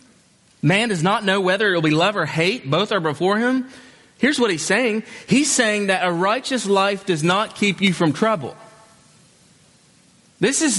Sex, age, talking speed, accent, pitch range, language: male, 30-49, 185 wpm, American, 160-205 Hz, English